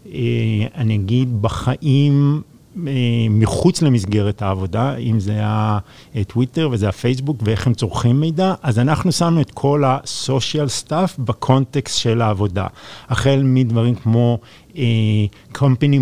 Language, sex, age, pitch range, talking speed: Hebrew, male, 50-69, 110-135 Hz, 110 wpm